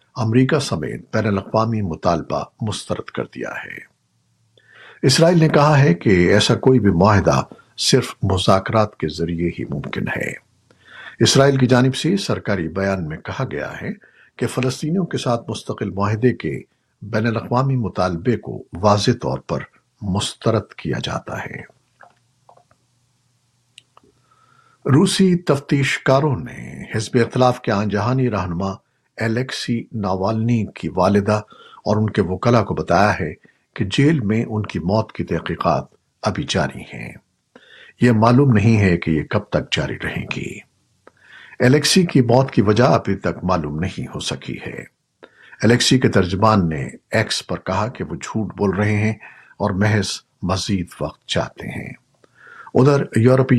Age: 50-69